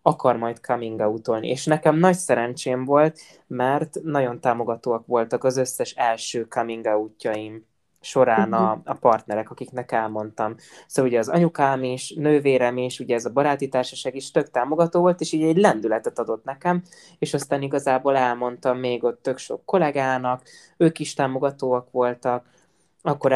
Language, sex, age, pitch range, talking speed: Hungarian, male, 20-39, 125-150 Hz, 155 wpm